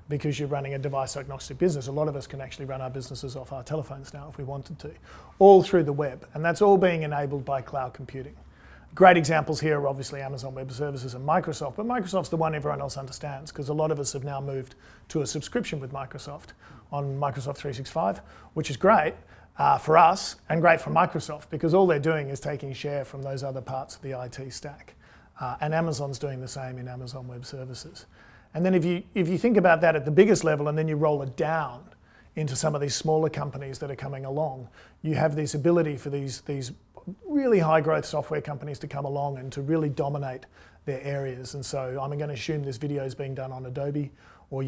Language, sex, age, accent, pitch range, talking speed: English, male, 40-59, Australian, 135-155 Hz, 225 wpm